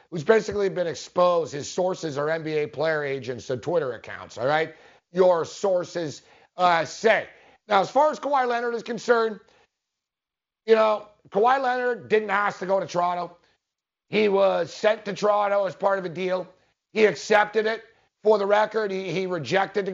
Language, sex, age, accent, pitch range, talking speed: English, male, 50-69, American, 175-215 Hz, 170 wpm